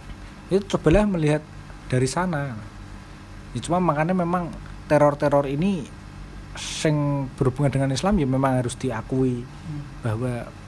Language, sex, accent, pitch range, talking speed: Indonesian, male, native, 115-145 Hz, 105 wpm